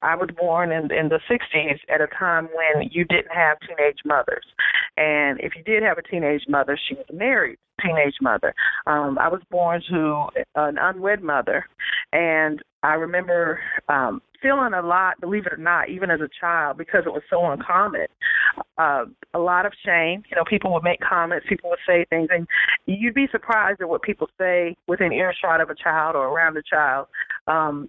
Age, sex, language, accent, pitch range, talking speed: 40-59, female, English, American, 160-195 Hz, 195 wpm